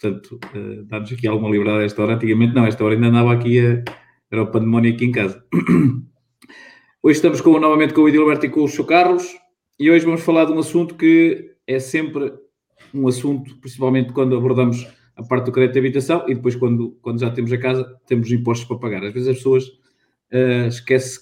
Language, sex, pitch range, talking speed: Portuguese, male, 120-135 Hz, 205 wpm